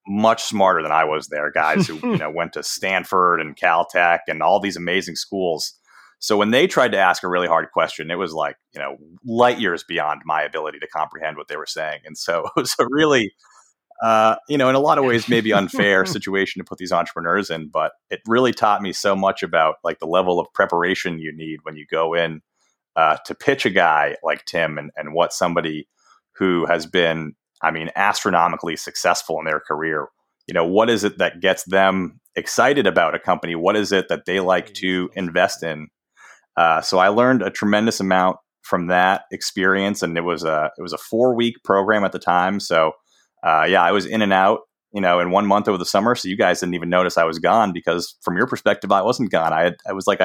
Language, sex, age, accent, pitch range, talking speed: English, male, 30-49, American, 85-105 Hz, 225 wpm